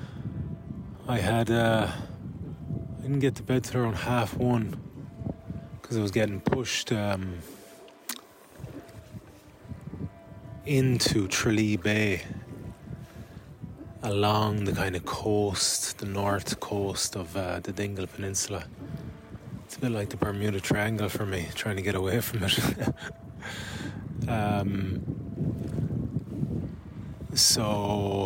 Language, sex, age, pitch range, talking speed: English, male, 20-39, 100-125 Hz, 110 wpm